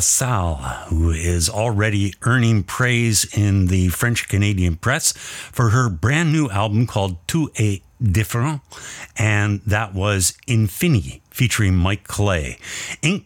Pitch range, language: 95-120 Hz, English